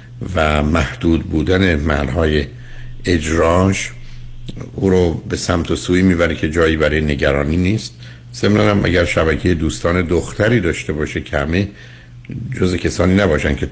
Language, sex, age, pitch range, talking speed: Persian, male, 60-79, 80-110 Hz, 130 wpm